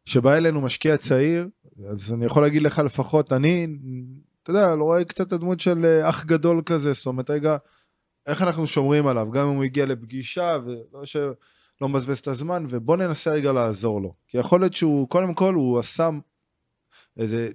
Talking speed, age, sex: 185 wpm, 20-39, male